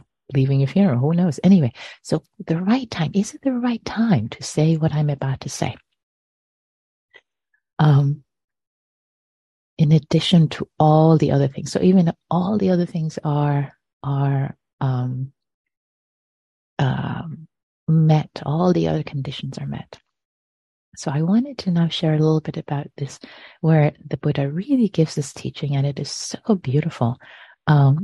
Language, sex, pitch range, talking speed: English, female, 140-175 Hz, 150 wpm